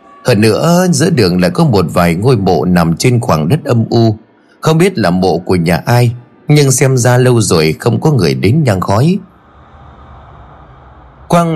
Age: 30-49